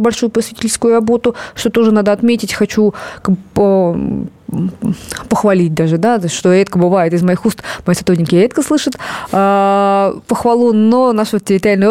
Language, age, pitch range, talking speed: Russian, 20-39, 195-235 Hz, 135 wpm